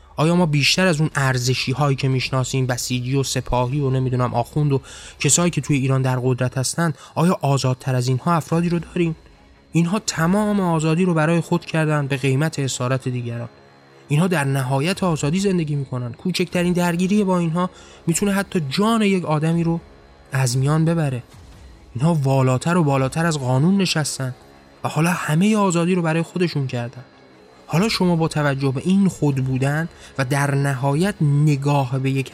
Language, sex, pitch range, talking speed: Persian, male, 130-165 Hz, 165 wpm